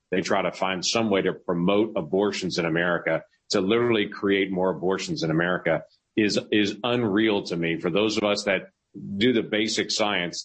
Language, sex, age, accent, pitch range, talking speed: English, male, 40-59, American, 90-105 Hz, 185 wpm